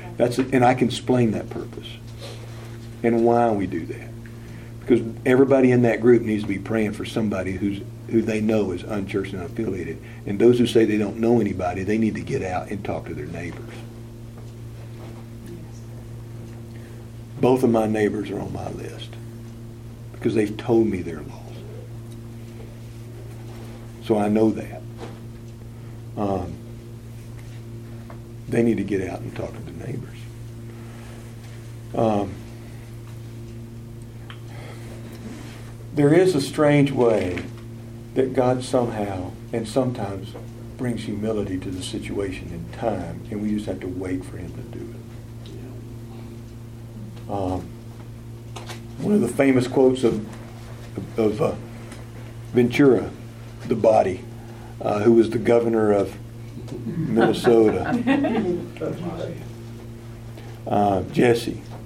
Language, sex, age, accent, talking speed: English, male, 60-79, American, 125 wpm